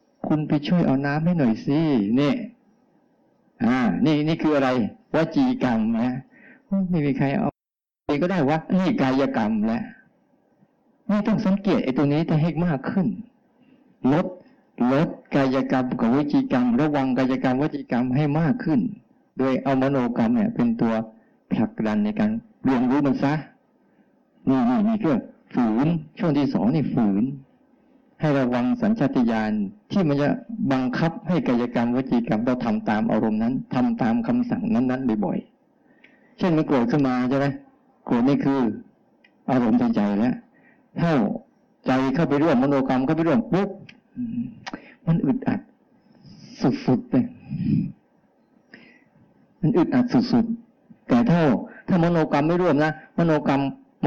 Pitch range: 150-255 Hz